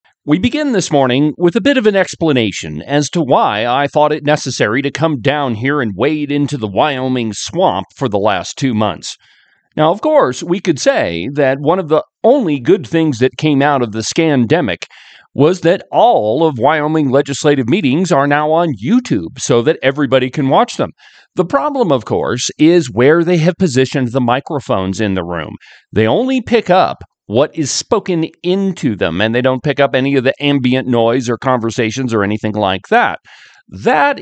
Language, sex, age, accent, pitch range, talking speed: English, male, 40-59, American, 120-165 Hz, 190 wpm